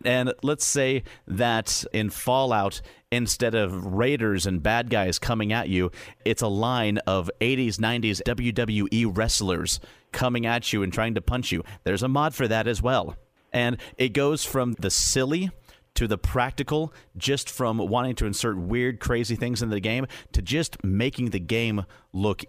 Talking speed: 170 wpm